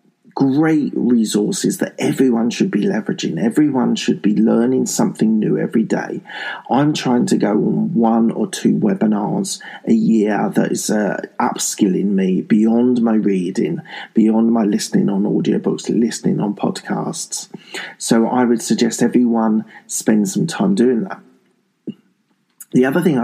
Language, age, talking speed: English, 40-59, 140 wpm